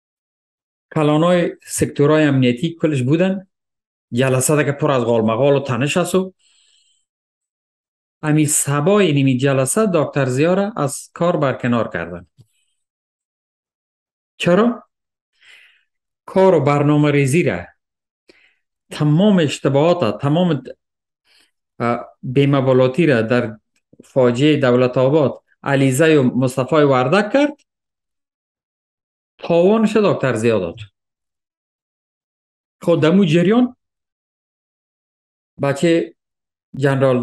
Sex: male